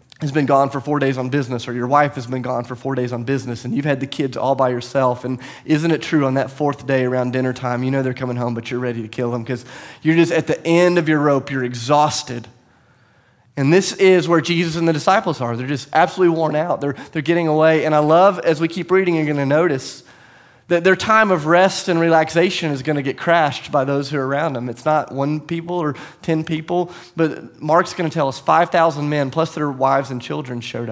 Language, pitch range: English, 130-160 Hz